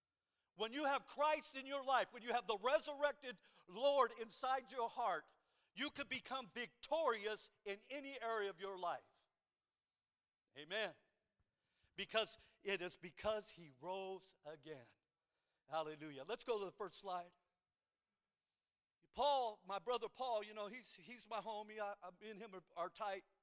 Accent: American